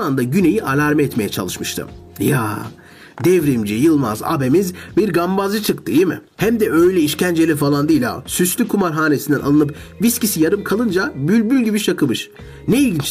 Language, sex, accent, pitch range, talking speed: Turkish, male, native, 140-215 Hz, 145 wpm